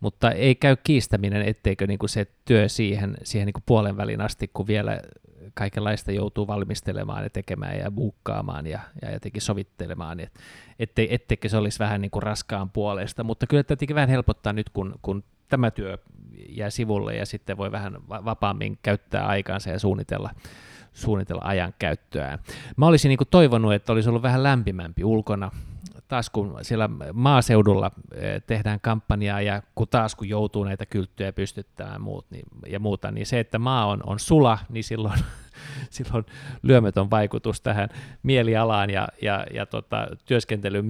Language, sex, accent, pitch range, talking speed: Finnish, male, native, 100-115 Hz, 150 wpm